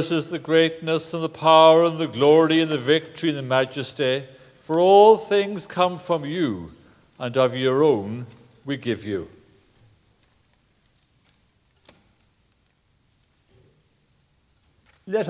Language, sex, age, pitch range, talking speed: English, male, 60-79, 130-170 Hz, 115 wpm